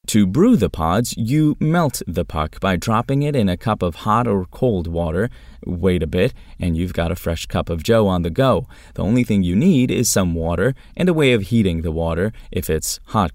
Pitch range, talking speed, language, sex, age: 85-115 Hz, 230 wpm, English, male, 20-39